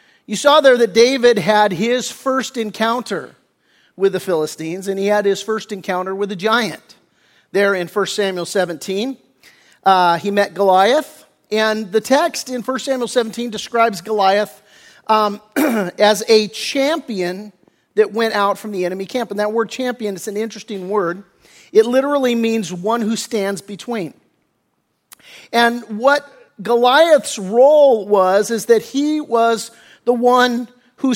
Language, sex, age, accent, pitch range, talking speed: English, male, 40-59, American, 200-245 Hz, 150 wpm